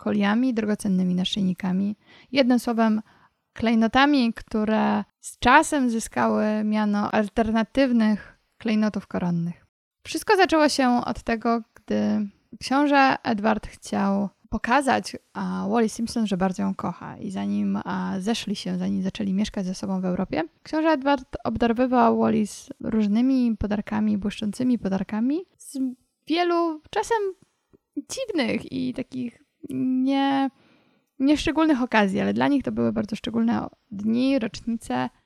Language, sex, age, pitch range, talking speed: Polish, female, 20-39, 195-250 Hz, 115 wpm